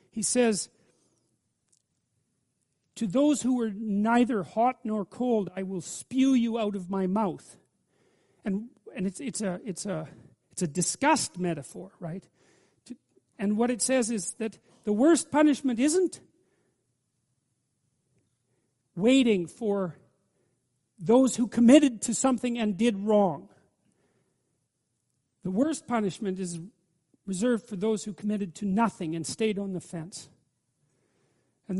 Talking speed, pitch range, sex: 130 wpm, 180-240 Hz, male